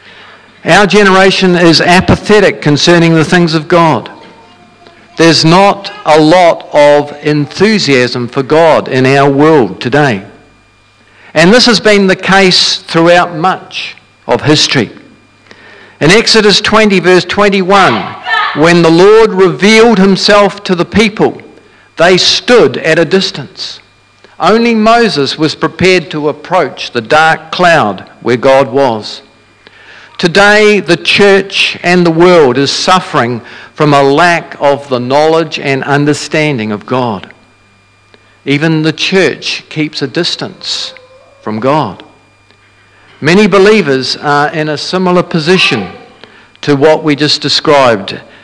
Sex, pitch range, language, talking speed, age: male, 135-190 Hz, English, 125 wpm, 50-69